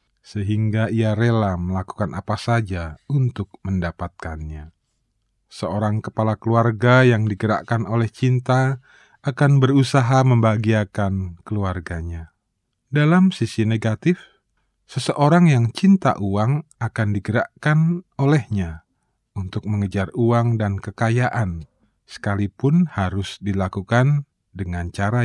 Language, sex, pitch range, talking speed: Indonesian, male, 100-125 Hz, 95 wpm